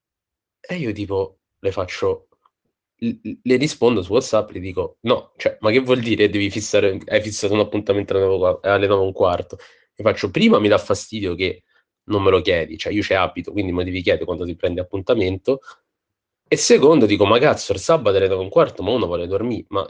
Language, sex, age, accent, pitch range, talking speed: Italian, male, 20-39, native, 105-155 Hz, 200 wpm